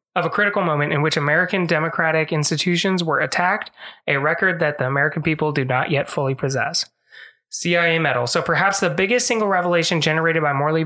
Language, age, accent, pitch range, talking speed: English, 20-39, American, 155-185 Hz, 180 wpm